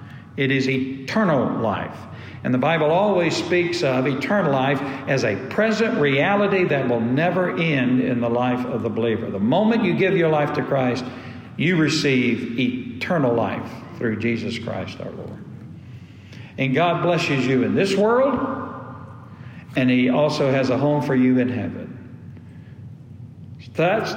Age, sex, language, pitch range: 60-79, male, English, 120-175 Hz